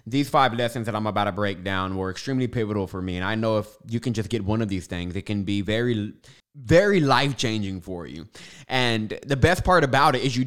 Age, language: 20-39, English